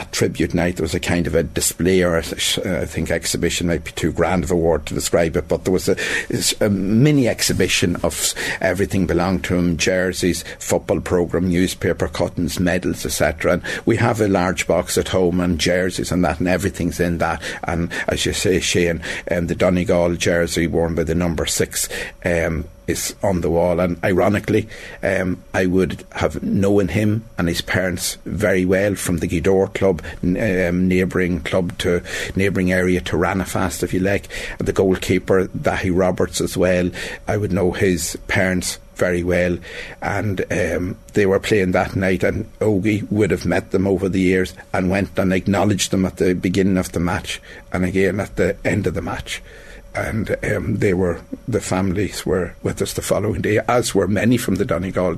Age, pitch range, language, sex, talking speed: 60-79, 85-95 Hz, English, male, 185 wpm